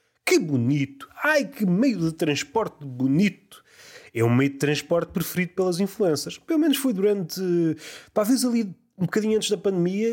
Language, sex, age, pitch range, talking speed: Portuguese, male, 30-49, 145-205 Hz, 160 wpm